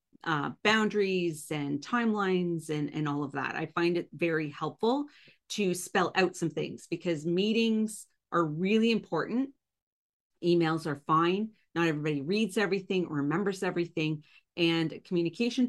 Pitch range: 160-215 Hz